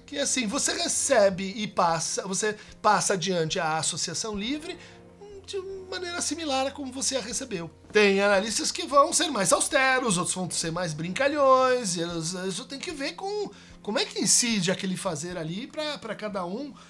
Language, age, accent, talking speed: Portuguese, 50-69, Brazilian, 165 wpm